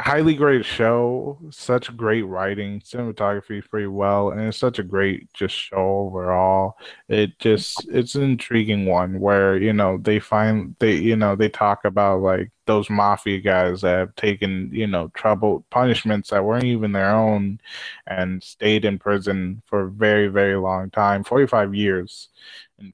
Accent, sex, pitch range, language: American, male, 95-110 Hz, English